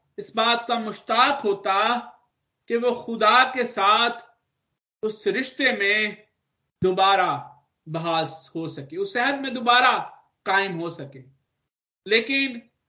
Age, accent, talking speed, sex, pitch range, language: 50-69, native, 115 wpm, male, 210-275 Hz, Hindi